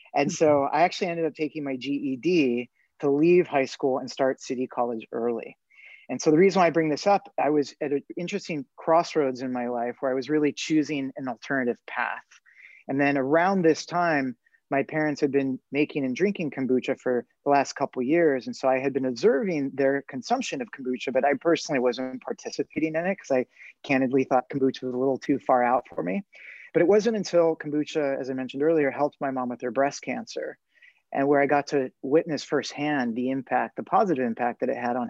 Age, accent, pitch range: 30-49, American, 130-160 Hz